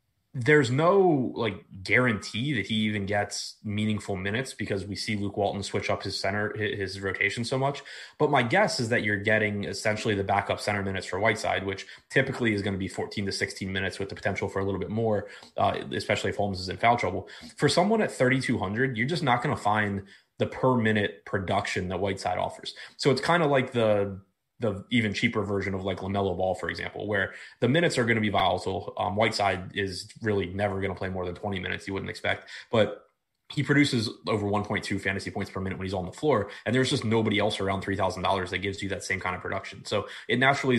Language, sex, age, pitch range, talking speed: English, male, 20-39, 100-120 Hz, 225 wpm